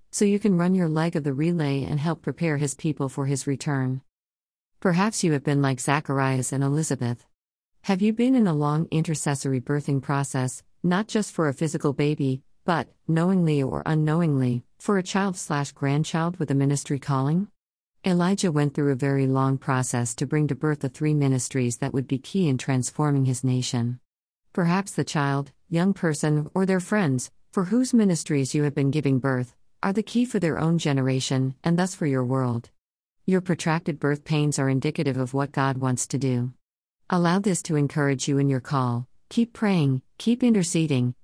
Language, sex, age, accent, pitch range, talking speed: English, female, 50-69, American, 135-170 Hz, 185 wpm